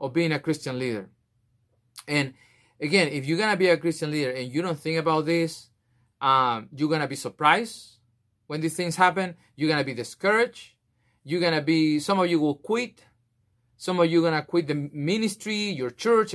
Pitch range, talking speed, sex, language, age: 125-170 Hz, 185 wpm, male, English, 30-49